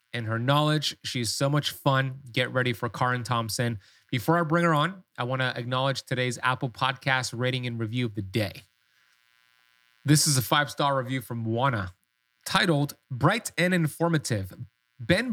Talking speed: 165 wpm